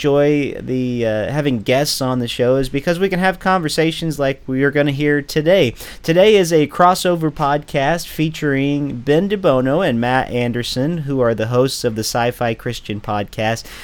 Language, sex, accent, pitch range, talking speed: English, male, American, 120-155 Hz, 180 wpm